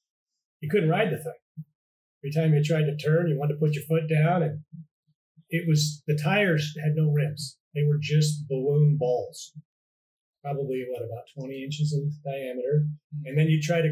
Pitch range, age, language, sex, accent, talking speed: 140-155 Hz, 30-49, English, male, American, 185 wpm